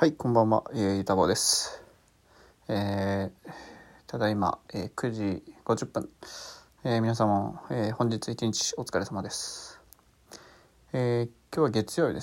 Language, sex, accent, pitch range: Japanese, male, native, 105-130 Hz